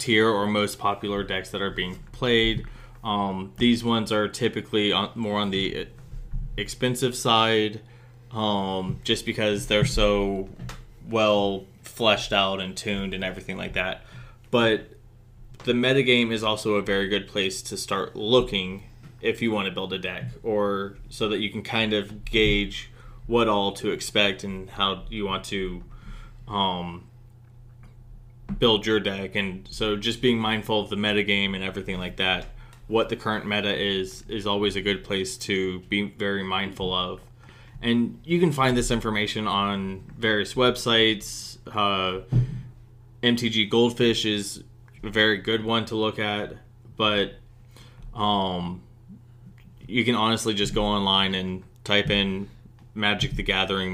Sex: male